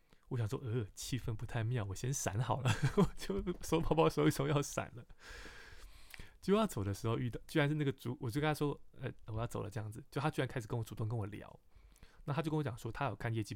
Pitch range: 105-130 Hz